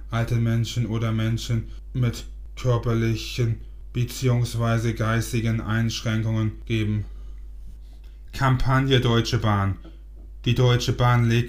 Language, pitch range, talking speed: German, 105-115 Hz, 90 wpm